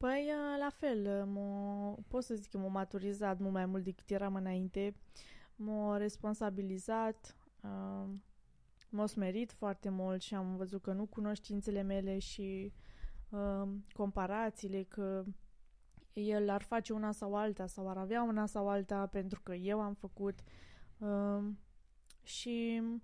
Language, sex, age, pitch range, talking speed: Romanian, female, 20-39, 195-225 Hz, 140 wpm